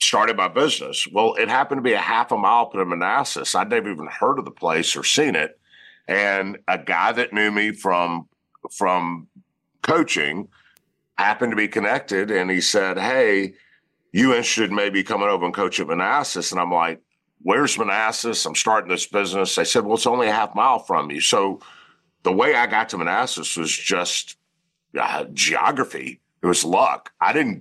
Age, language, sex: 50-69, English, male